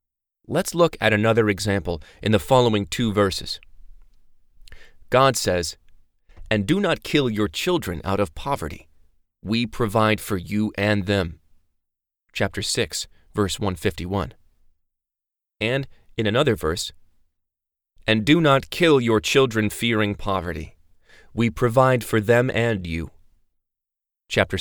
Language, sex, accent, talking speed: English, male, American, 120 wpm